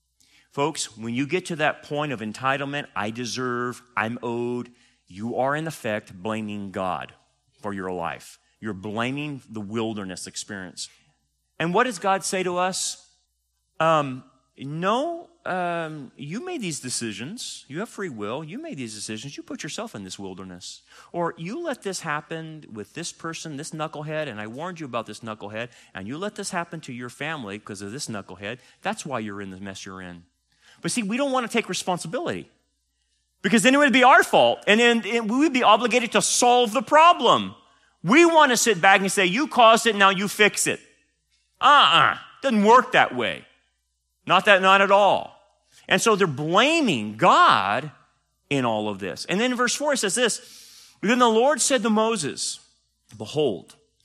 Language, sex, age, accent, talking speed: English, male, 40-59, American, 185 wpm